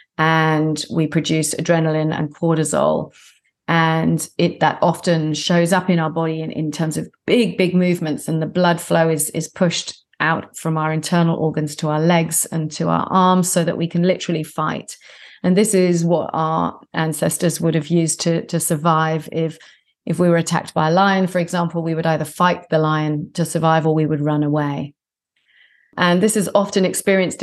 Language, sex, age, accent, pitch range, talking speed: English, female, 40-59, British, 155-175 Hz, 190 wpm